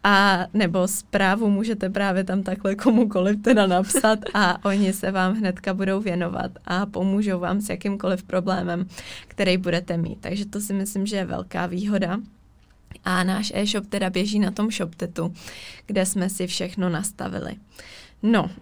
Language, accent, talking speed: Czech, native, 155 wpm